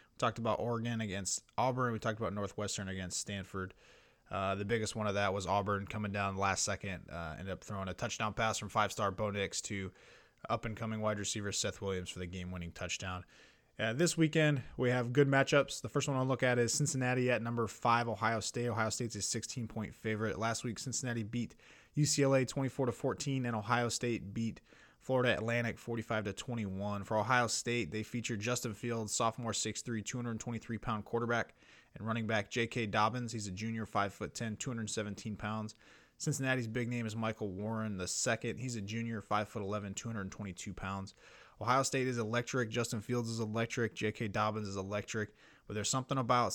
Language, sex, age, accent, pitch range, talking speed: English, male, 20-39, American, 105-120 Hz, 185 wpm